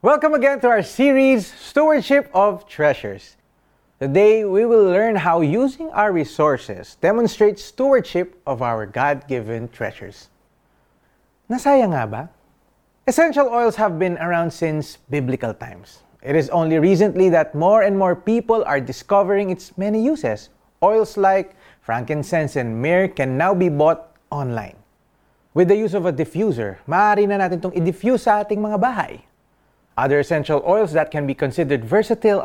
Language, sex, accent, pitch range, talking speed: Filipino, male, native, 140-210 Hz, 140 wpm